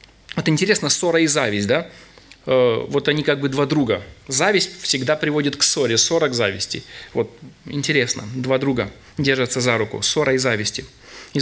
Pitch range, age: 130-175 Hz, 30-49